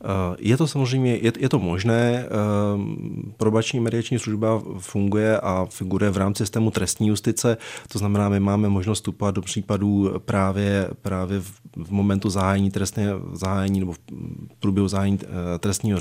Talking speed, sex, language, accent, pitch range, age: 125 wpm, male, Czech, native, 95-110 Hz, 30-49